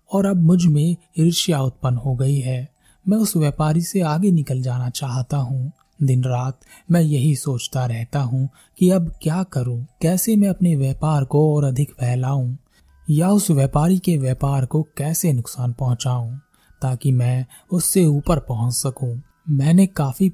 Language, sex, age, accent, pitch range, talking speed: Hindi, male, 20-39, native, 125-160 Hz, 160 wpm